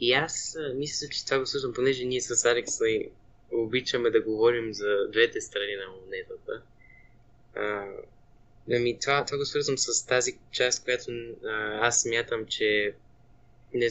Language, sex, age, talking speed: Bulgarian, male, 20-39, 140 wpm